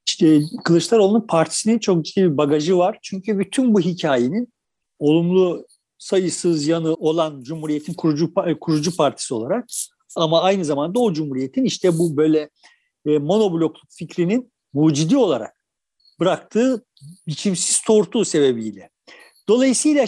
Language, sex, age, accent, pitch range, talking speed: Turkish, male, 50-69, native, 165-255 Hz, 115 wpm